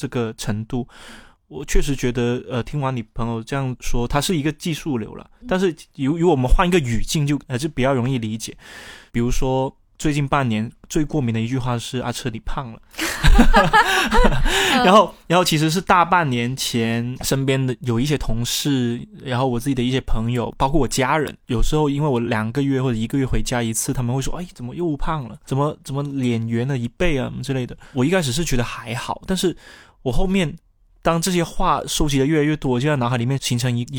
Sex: male